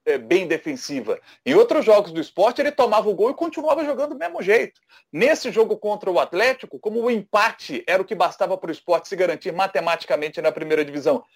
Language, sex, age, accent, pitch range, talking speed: Portuguese, male, 40-59, Brazilian, 175-260 Hz, 200 wpm